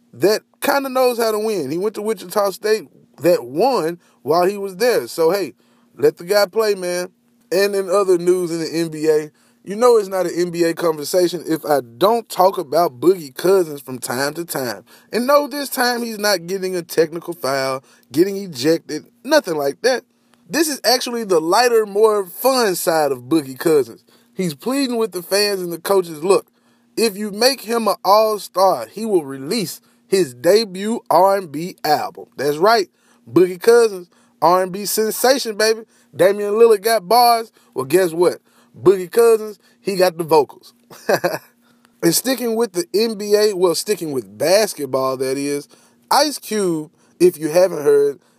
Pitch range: 170-230 Hz